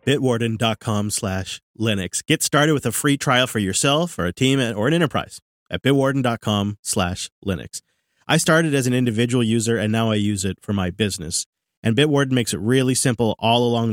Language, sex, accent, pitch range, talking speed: English, male, American, 110-145 Hz, 185 wpm